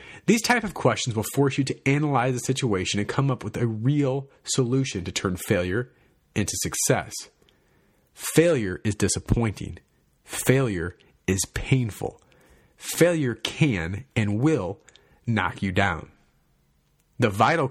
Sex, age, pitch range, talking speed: male, 40-59, 100-135 Hz, 130 wpm